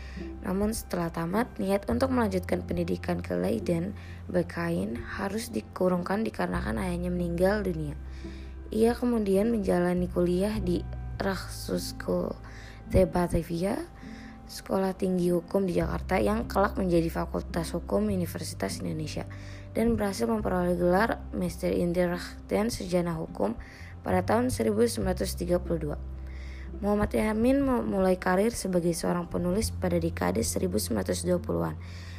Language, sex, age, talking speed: English, female, 20-39, 105 wpm